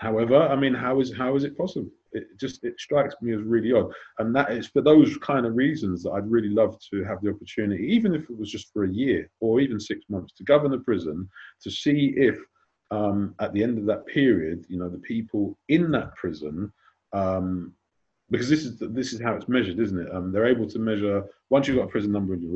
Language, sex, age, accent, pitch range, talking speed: English, male, 30-49, British, 90-120 Hz, 240 wpm